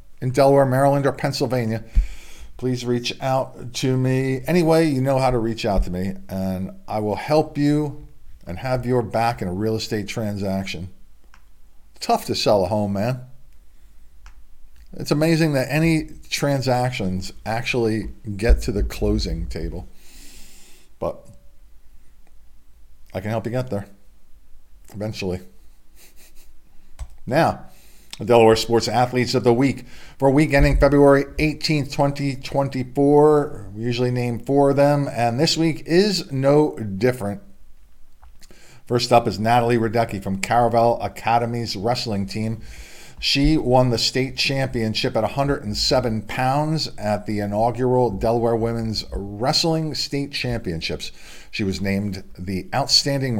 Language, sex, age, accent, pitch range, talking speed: English, male, 50-69, American, 95-135 Hz, 130 wpm